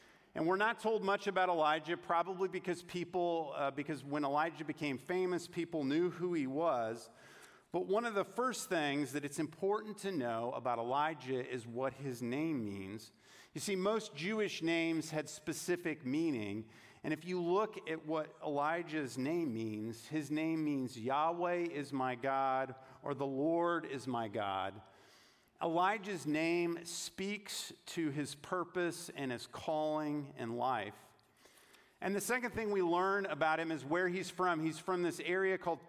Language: English